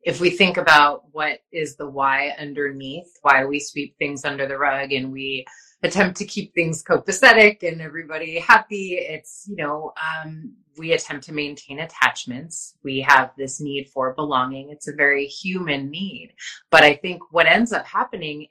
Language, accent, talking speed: English, American, 170 wpm